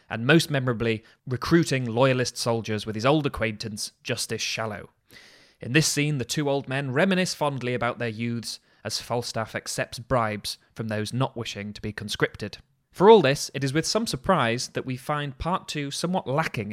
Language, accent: English, British